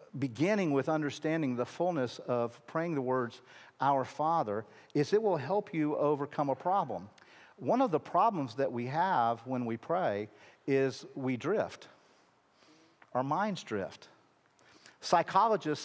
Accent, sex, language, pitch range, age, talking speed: American, male, English, 135-170 Hz, 50-69, 135 wpm